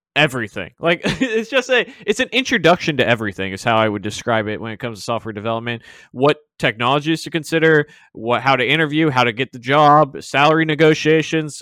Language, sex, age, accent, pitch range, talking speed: English, male, 20-39, American, 120-160 Hz, 190 wpm